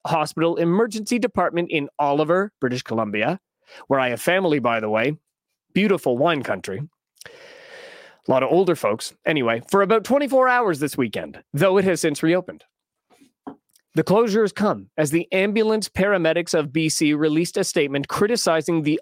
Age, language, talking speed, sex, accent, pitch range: 30-49, English, 155 wpm, male, American, 155-210 Hz